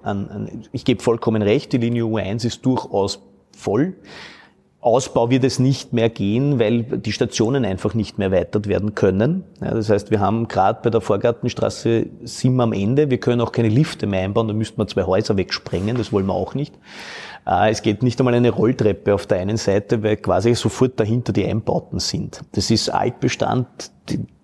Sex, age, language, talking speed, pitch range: male, 30-49, German, 195 wpm, 105-125 Hz